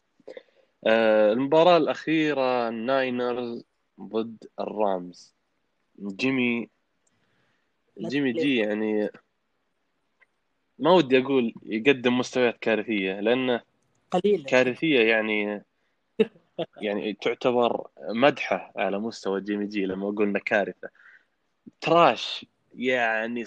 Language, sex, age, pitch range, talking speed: Arabic, male, 20-39, 105-140 Hz, 75 wpm